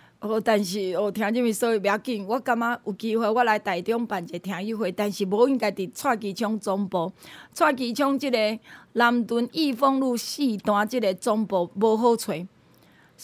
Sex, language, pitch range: female, Chinese, 205-270 Hz